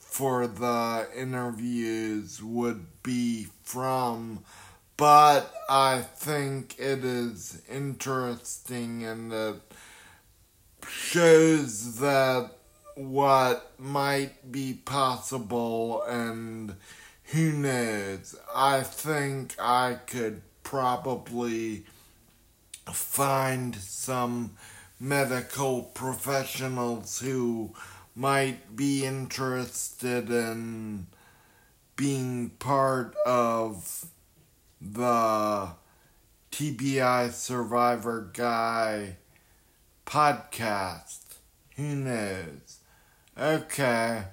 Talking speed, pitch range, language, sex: 65 wpm, 110-130 Hz, English, male